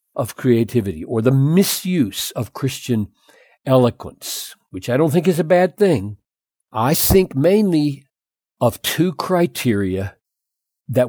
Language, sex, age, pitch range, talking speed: English, male, 60-79, 100-170 Hz, 125 wpm